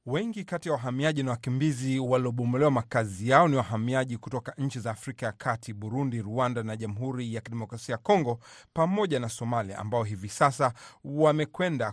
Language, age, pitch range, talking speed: Swahili, 40-59, 115-150 Hz, 160 wpm